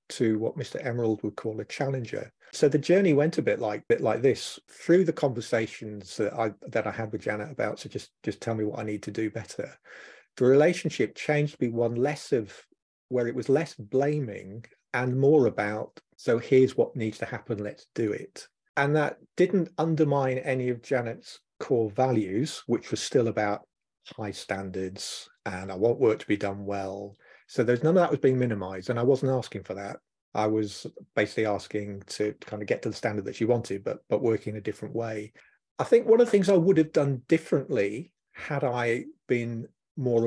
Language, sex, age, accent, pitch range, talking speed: English, male, 40-59, British, 110-135 Hz, 205 wpm